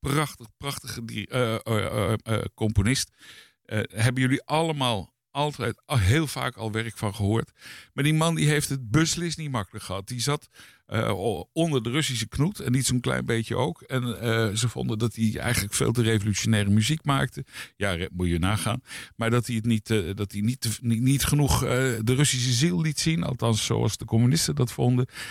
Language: Dutch